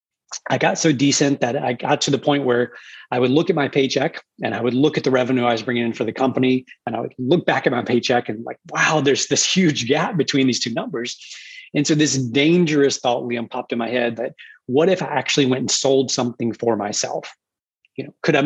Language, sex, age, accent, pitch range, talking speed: English, male, 30-49, American, 120-145 Hz, 245 wpm